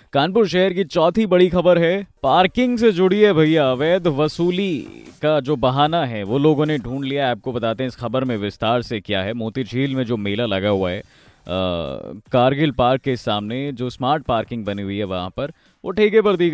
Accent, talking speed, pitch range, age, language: native, 205 wpm, 120-170 Hz, 20-39, Hindi